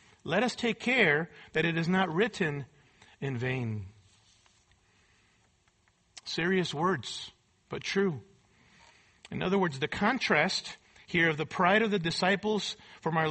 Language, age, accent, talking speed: English, 40-59, American, 130 wpm